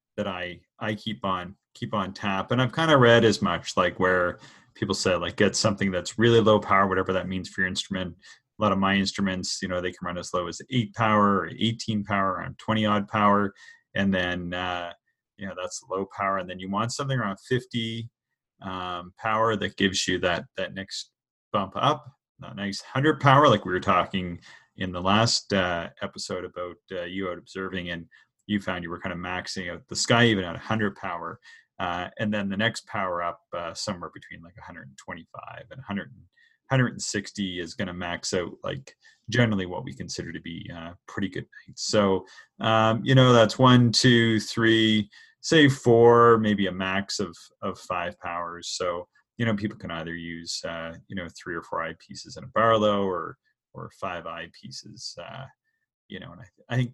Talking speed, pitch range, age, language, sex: 195 wpm, 90-115 Hz, 30-49, English, male